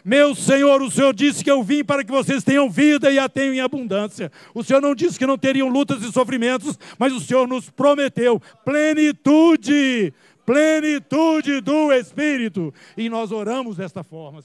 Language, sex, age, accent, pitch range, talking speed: Portuguese, male, 60-79, Brazilian, 215-285 Hz, 175 wpm